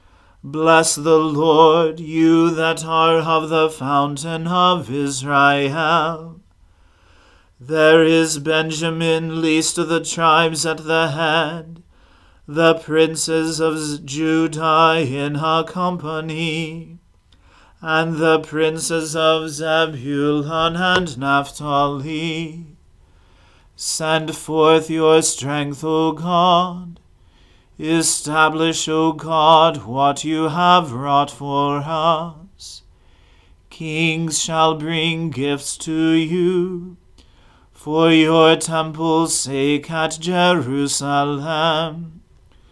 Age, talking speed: 40-59, 85 wpm